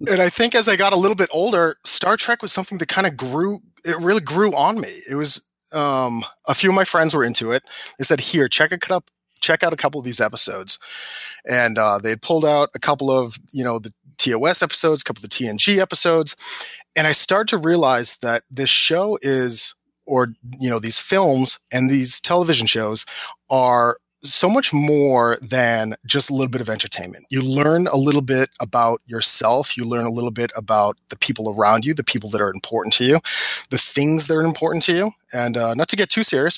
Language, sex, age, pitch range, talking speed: English, male, 30-49, 120-165 Hz, 225 wpm